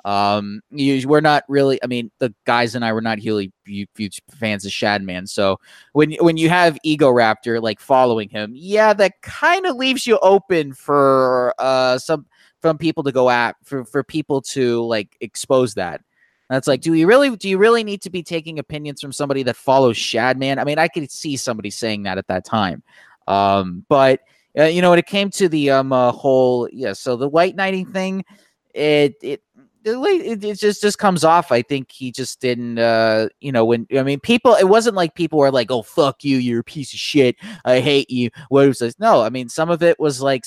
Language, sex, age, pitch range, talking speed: English, male, 20-39, 115-160 Hz, 220 wpm